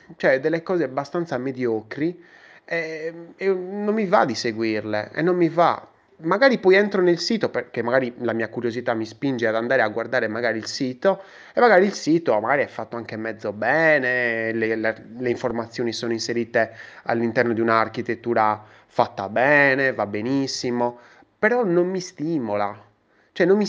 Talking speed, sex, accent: 160 wpm, male, native